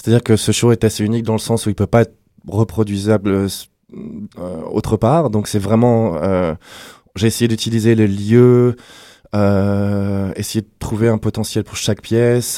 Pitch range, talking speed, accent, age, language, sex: 100-115 Hz, 170 wpm, French, 20-39, French, male